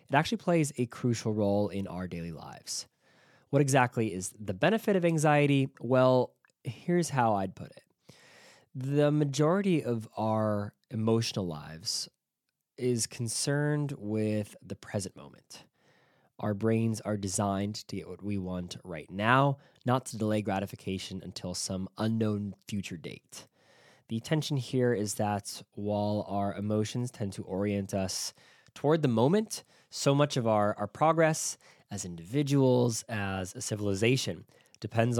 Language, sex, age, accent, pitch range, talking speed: English, male, 20-39, American, 100-130 Hz, 140 wpm